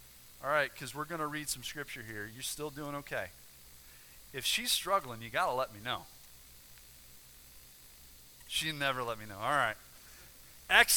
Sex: male